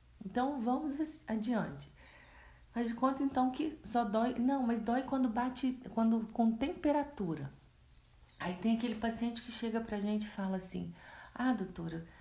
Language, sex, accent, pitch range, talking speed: Portuguese, female, Brazilian, 180-230 Hz, 150 wpm